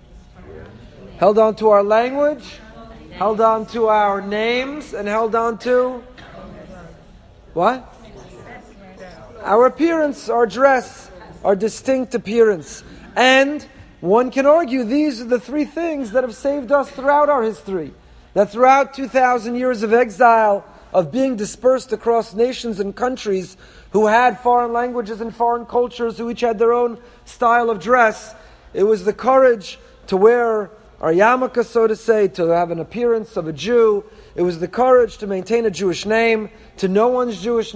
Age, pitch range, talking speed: 40-59, 210-250 Hz, 155 wpm